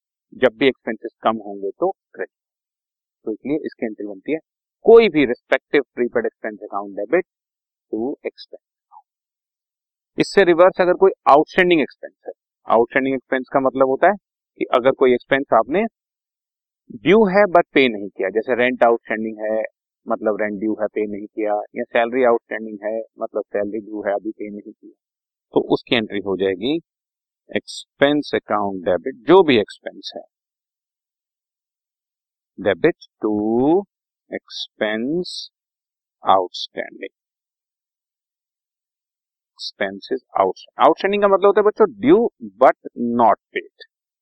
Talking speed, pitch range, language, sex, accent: 135 wpm, 110-155 Hz, Hindi, male, native